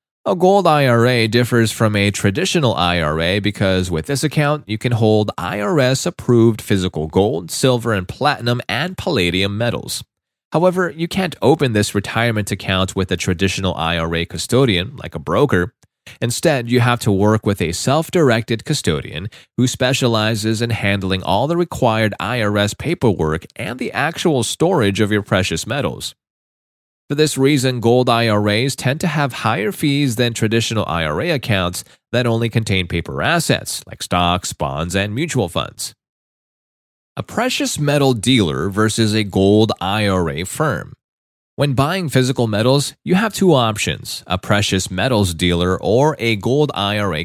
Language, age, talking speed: English, 30-49, 145 wpm